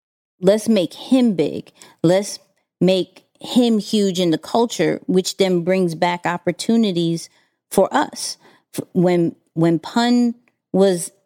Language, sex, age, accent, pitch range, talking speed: English, female, 30-49, American, 165-195 Hz, 115 wpm